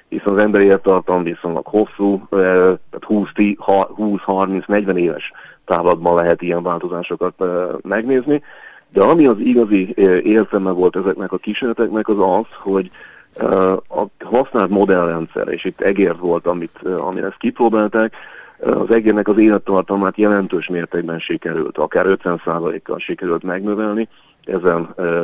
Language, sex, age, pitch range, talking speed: Hungarian, male, 40-59, 90-105 Hz, 115 wpm